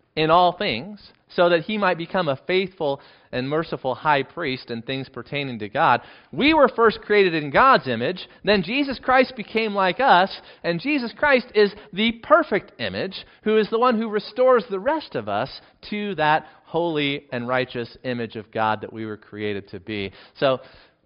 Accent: American